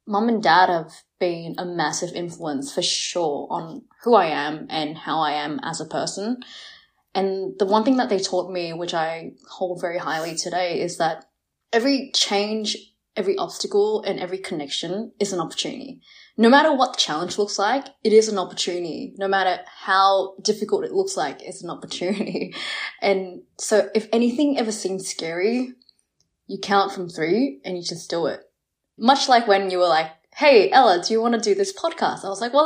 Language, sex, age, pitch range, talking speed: English, female, 20-39, 185-270 Hz, 190 wpm